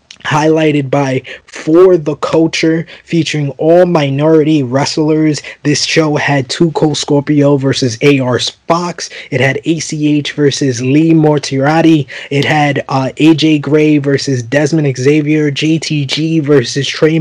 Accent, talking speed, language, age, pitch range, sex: American, 120 wpm, English, 20-39, 135-155 Hz, male